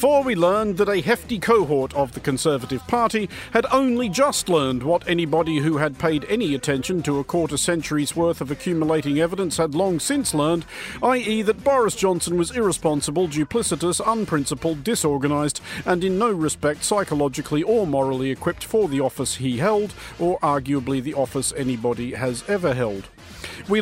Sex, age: male, 50-69